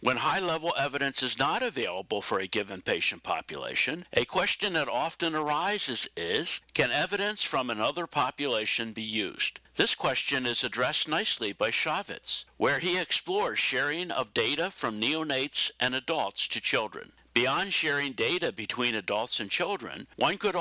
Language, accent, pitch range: English, American, 125-165 Hz